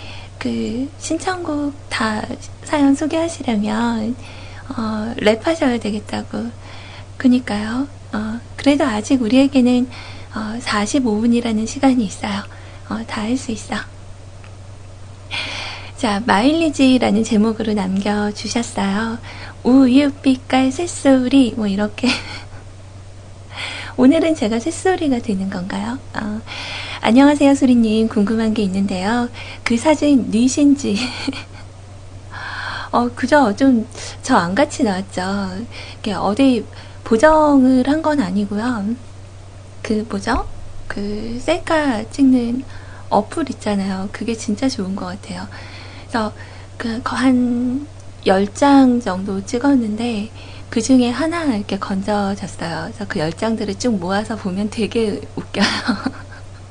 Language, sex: Korean, female